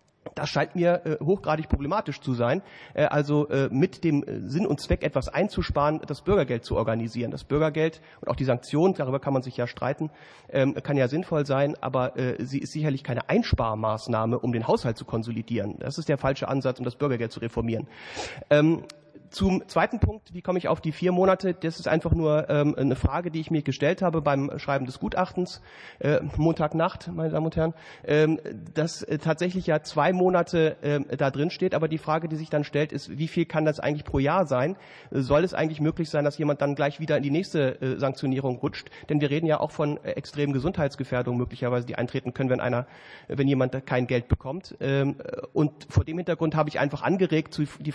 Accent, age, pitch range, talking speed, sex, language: German, 40-59, 135-160 Hz, 190 wpm, male, German